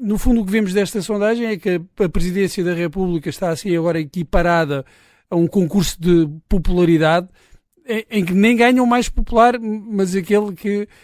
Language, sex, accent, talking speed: Portuguese, male, Portuguese, 170 wpm